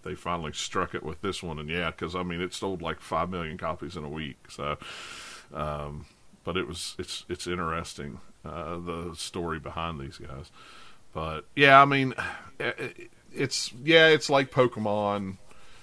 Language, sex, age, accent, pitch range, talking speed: English, male, 40-59, American, 80-105 Hz, 170 wpm